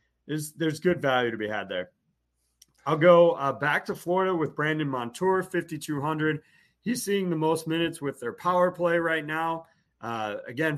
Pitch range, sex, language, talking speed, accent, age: 130-165 Hz, male, English, 175 wpm, American, 30-49